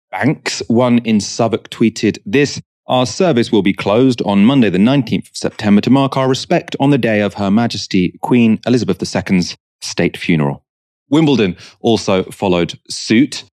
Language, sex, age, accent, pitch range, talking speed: English, male, 30-49, British, 90-125 Hz, 160 wpm